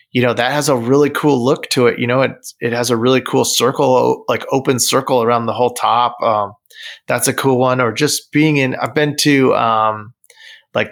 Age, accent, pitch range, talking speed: 30-49, American, 120-150 Hz, 220 wpm